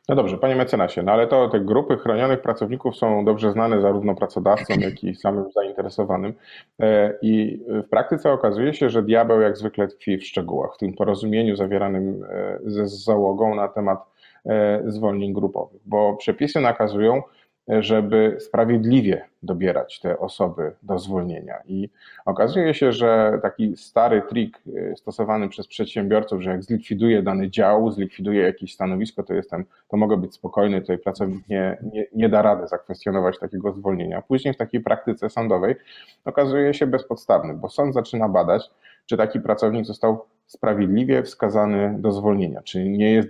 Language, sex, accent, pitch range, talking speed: Polish, male, native, 100-115 Hz, 150 wpm